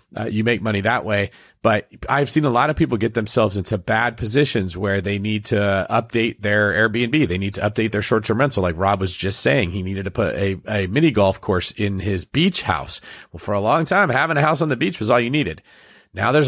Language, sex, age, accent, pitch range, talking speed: English, male, 30-49, American, 95-125 Hz, 245 wpm